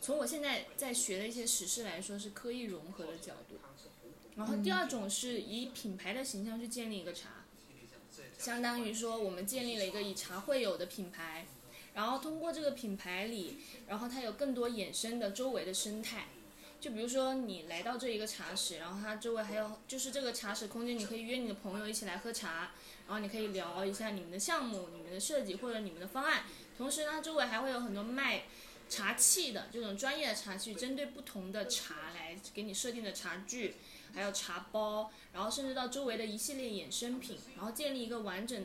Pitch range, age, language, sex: 195-255 Hz, 20-39, Chinese, female